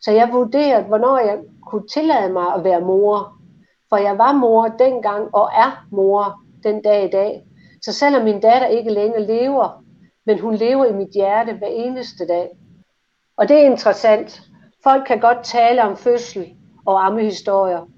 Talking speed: 170 wpm